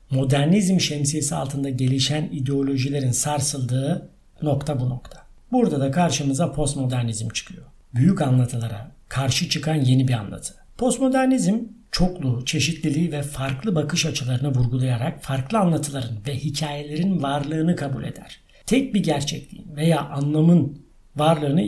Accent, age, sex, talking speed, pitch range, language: native, 60-79, male, 115 wpm, 135-185 Hz, Turkish